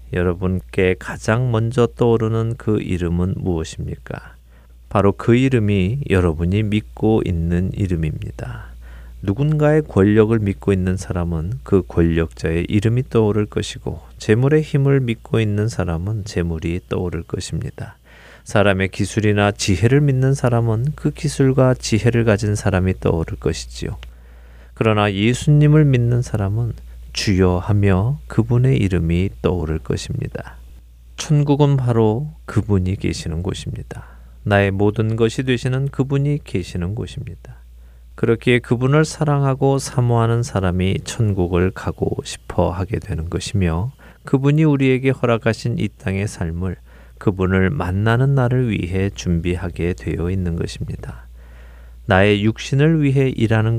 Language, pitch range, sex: Korean, 85-120 Hz, male